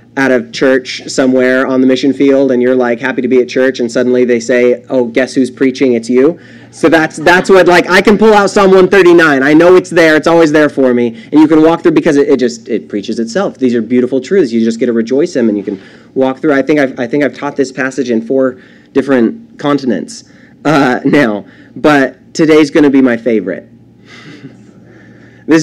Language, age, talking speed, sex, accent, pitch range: English, 30-49, 225 wpm, male, American, 115-155 Hz